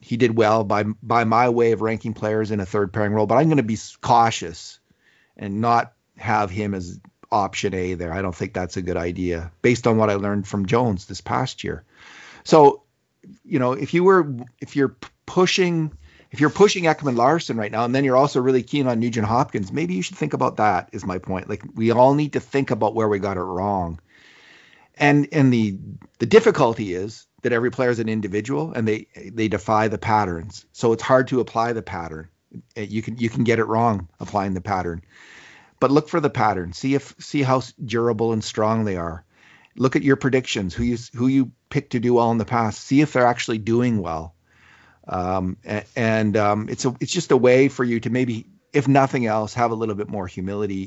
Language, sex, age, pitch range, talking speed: English, male, 40-59, 100-125 Hz, 220 wpm